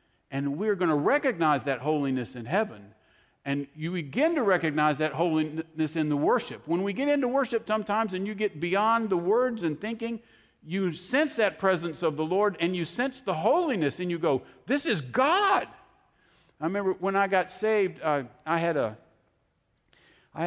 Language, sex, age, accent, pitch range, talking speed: English, male, 50-69, American, 165-215 Hz, 180 wpm